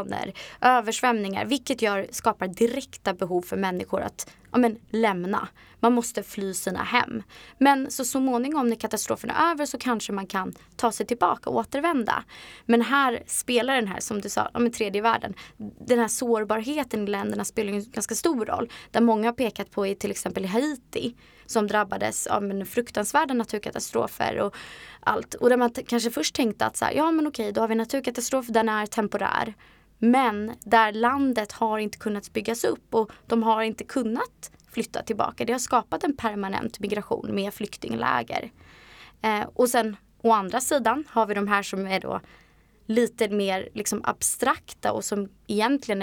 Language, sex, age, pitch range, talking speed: Swedish, female, 20-39, 205-245 Hz, 180 wpm